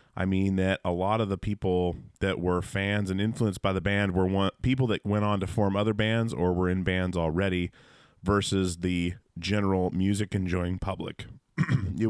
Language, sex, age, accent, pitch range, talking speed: English, male, 30-49, American, 85-105 Hz, 190 wpm